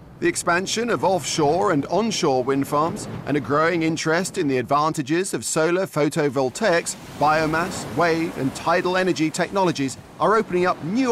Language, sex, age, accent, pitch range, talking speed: English, male, 40-59, British, 140-185 Hz, 150 wpm